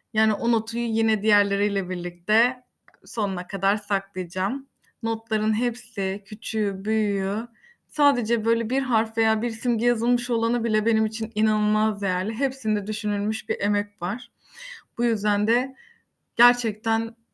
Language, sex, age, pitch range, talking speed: Turkish, female, 20-39, 215-245 Hz, 125 wpm